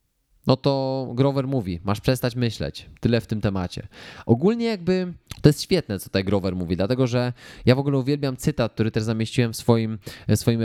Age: 20-39